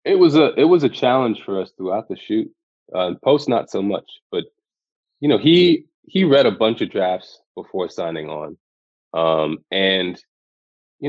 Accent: American